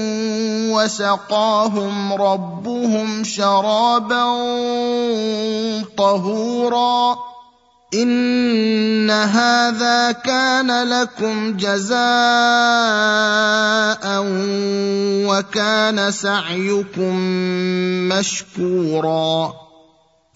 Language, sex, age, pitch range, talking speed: Arabic, male, 30-49, 200-245 Hz, 35 wpm